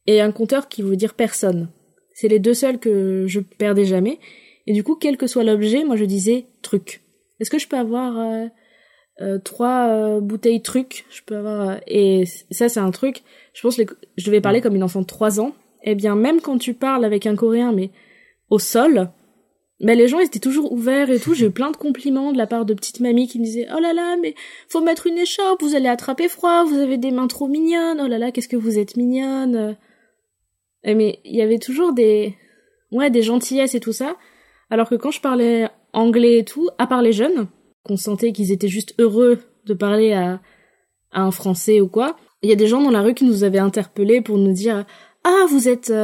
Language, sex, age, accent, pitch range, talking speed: French, female, 20-39, French, 215-265 Hz, 230 wpm